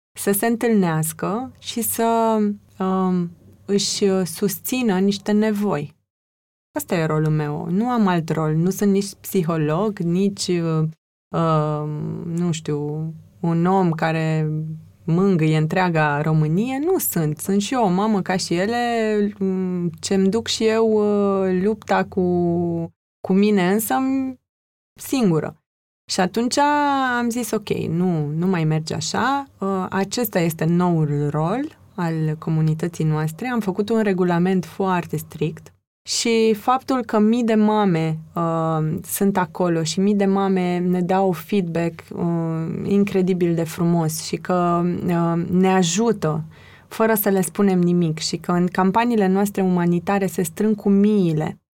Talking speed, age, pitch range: 135 wpm, 20-39, 165-205 Hz